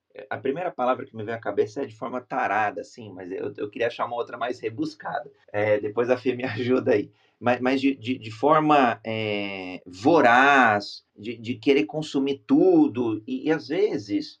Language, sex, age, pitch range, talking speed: Portuguese, male, 30-49, 115-160 Hz, 190 wpm